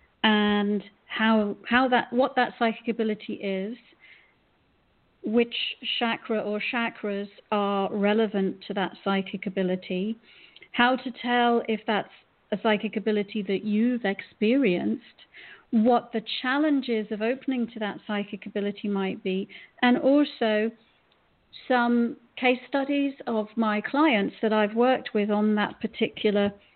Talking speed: 125 wpm